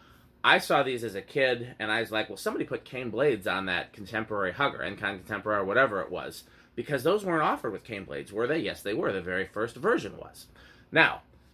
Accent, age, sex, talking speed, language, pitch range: American, 30-49, male, 225 wpm, English, 90-115 Hz